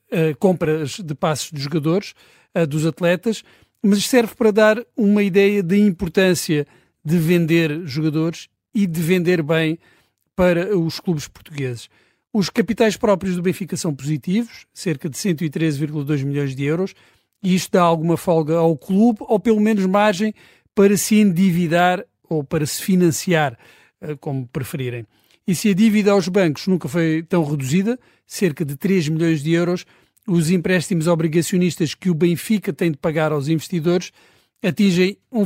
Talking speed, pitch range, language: 150 wpm, 160-195 Hz, Portuguese